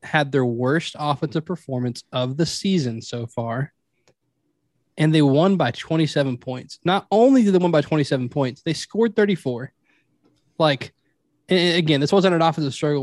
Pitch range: 130-170 Hz